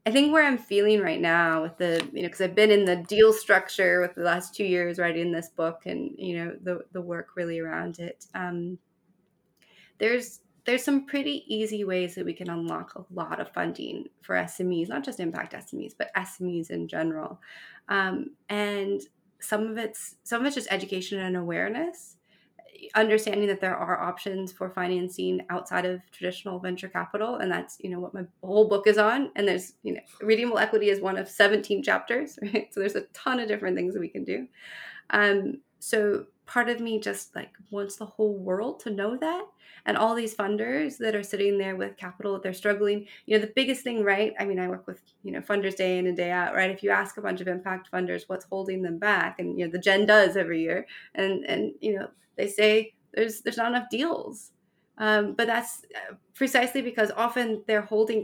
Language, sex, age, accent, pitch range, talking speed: English, female, 20-39, American, 185-220 Hz, 210 wpm